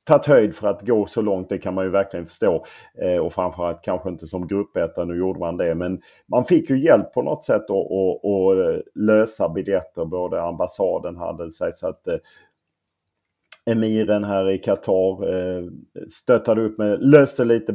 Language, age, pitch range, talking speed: English, 40-59, 95-130 Hz, 185 wpm